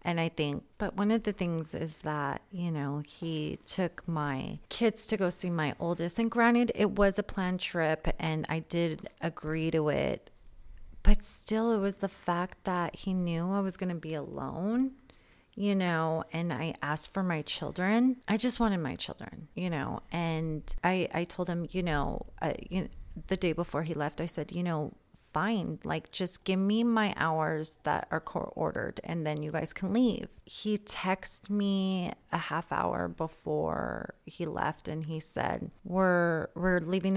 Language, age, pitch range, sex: English, 30-49, 160-195 Hz, female